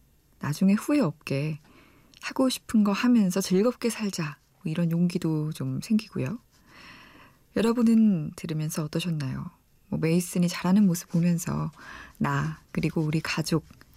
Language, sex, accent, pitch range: Korean, female, native, 160-215 Hz